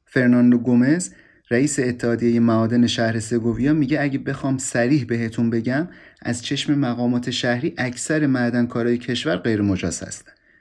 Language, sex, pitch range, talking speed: Persian, male, 120-155 Hz, 130 wpm